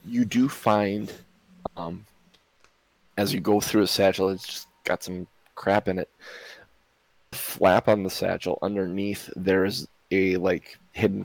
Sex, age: male, 20-39